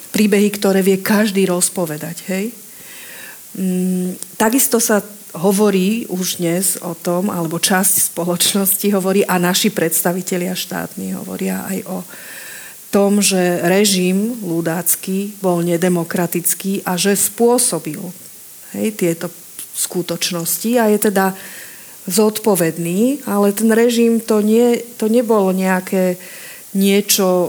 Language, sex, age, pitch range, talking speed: Slovak, female, 40-59, 180-215 Hz, 105 wpm